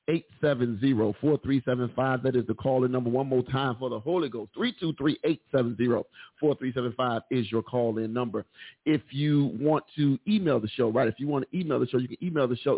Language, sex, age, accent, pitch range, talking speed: English, male, 40-59, American, 130-150 Hz, 175 wpm